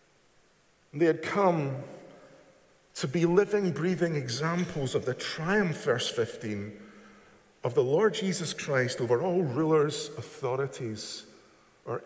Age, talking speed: 50-69, 120 wpm